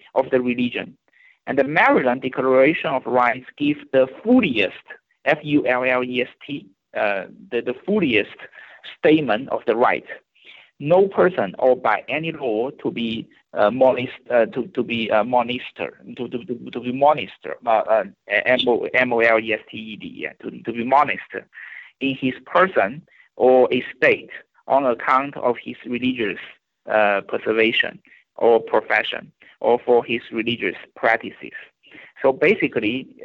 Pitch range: 115-150 Hz